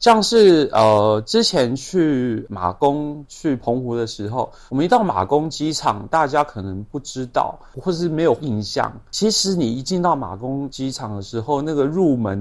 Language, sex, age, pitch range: Chinese, male, 30-49, 110-155 Hz